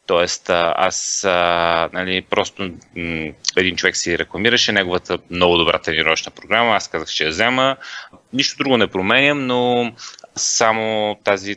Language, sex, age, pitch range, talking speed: Bulgarian, male, 30-49, 90-120 Hz, 140 wpm